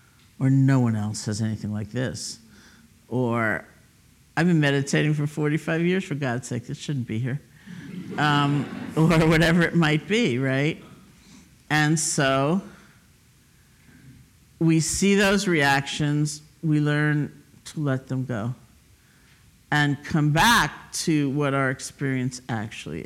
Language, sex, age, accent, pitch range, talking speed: English, male, 50-69, American, 125-155 Hz, 130 wpm